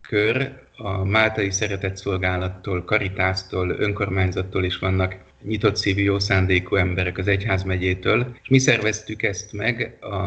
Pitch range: 90-105 Hz